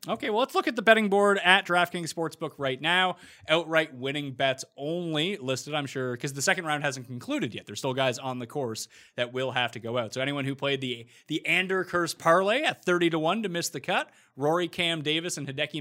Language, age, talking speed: English, 30-49, 230 wpm